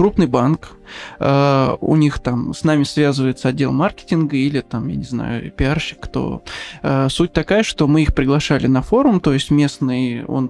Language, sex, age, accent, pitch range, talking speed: Russian, male, 20-39, native, 140-170 Hz, 165 wpm